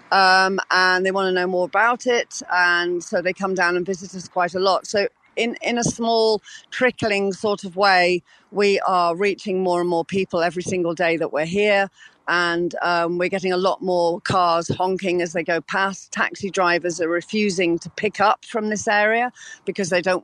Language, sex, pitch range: English, female, 180-210 Hz